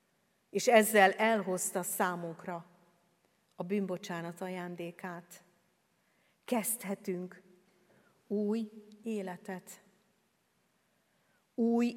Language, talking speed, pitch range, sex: Hungarian, 55 wpm, 195-250 Hz, female